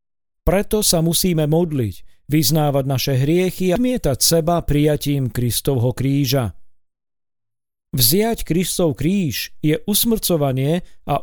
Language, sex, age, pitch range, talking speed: Slovak, male, 40-59, 135-185 Hz, 100 wpm